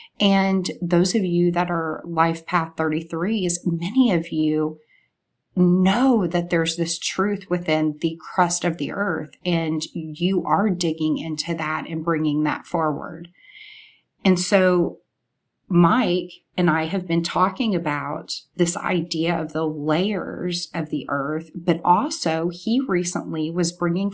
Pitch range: 165-190 Hz